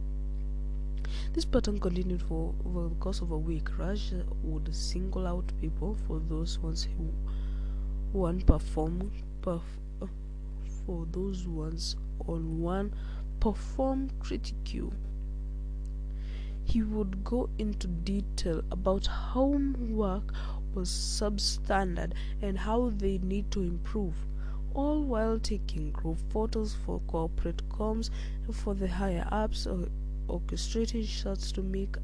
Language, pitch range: English, 125-205 Hz